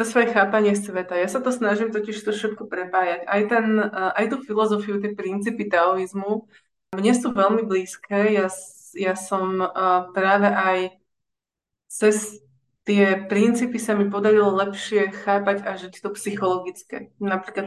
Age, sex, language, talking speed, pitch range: 20-39, female, Czech, 130 wpm, 185-215 Hz